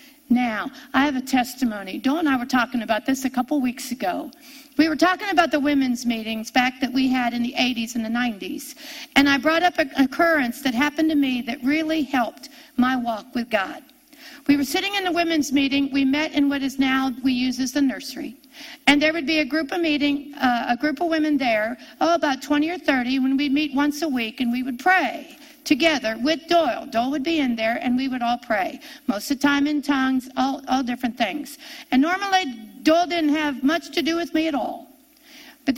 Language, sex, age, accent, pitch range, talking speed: English, female, 50-69, American, 260-310 Hz, 225 wpm